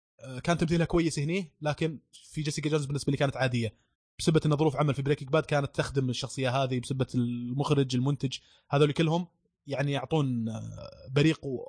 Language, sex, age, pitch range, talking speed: Arabic, male, 20-39, 140-170 Hz, 160 wpm